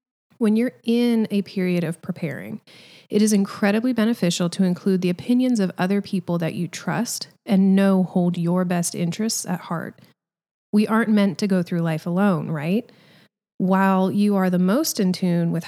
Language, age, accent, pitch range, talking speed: English, 30-49, American, 175-210 Hz, 175 wpm